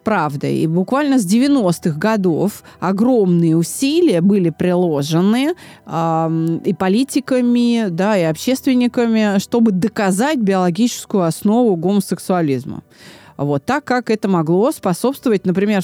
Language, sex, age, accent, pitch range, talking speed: Russian, female, 30-49, native, 175-245 Hz, 105 wpm